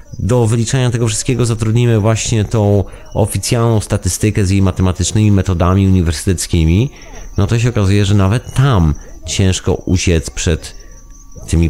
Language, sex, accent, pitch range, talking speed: Polish, male, native, 85-105 Hz, 130 wpm